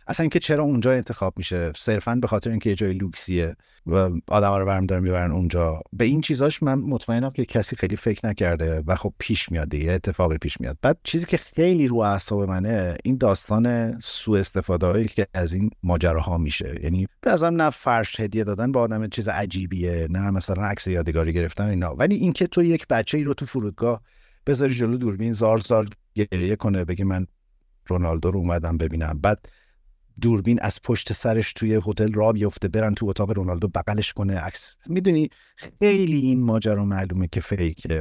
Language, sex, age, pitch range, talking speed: Persian, male, 50-69, 90-120 Hz, 180 wpm